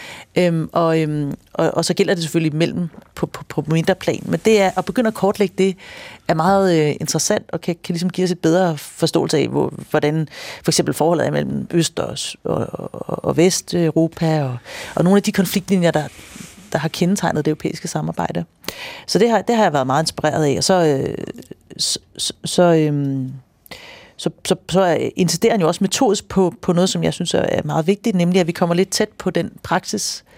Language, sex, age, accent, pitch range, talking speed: Danish, female, 40-59, native, 160-190 Hz, 205 wpm